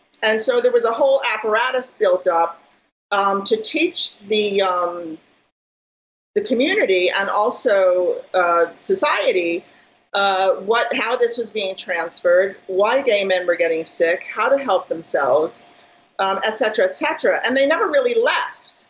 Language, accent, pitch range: English, American, 195-280 Hz